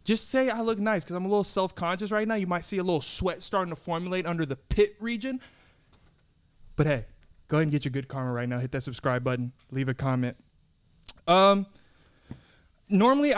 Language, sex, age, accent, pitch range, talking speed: English, male, 20-39, American, 145-190 Hz, 195 wpm